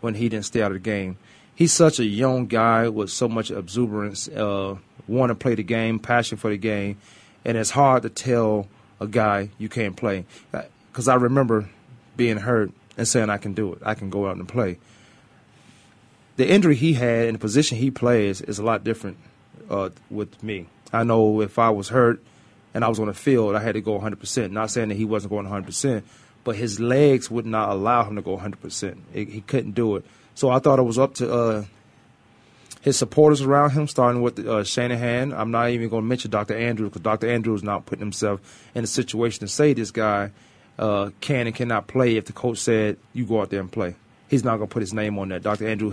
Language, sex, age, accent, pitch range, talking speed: English, male, 30-49, American, 105-120 Hz, 225 wpm